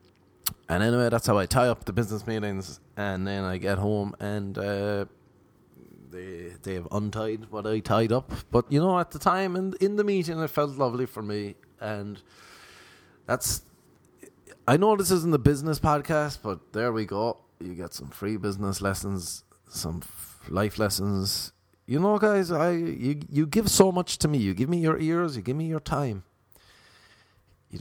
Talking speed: 185 wpm